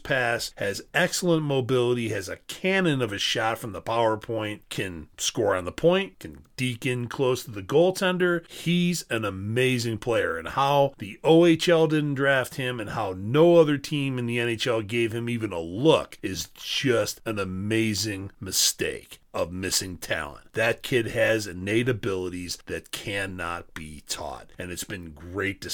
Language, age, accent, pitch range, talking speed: English, 40-59, American, 95-125 Hz, 165 wpm